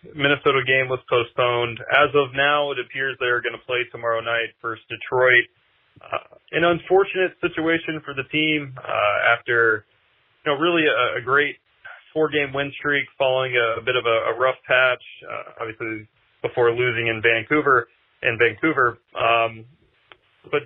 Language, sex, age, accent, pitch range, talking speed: English, male, 30-49, American, 115-140 Hz, 160 wpm